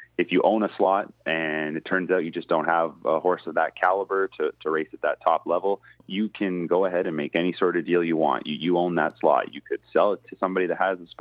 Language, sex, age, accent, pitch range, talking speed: English, male, 30-49, American, 80-95 Hz, 275 wpm